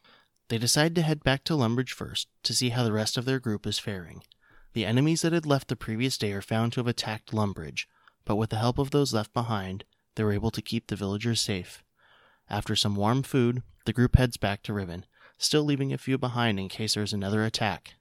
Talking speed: 230 wpm